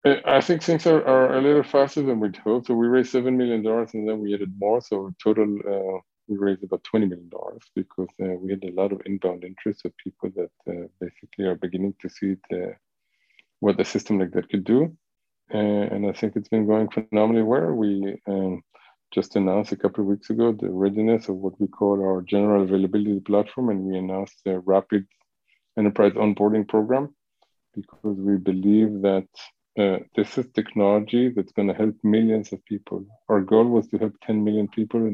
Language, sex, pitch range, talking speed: English, male, 95-115 Hz, 195 wpm